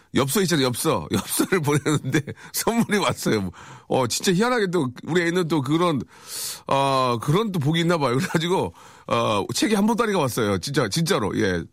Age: 40-59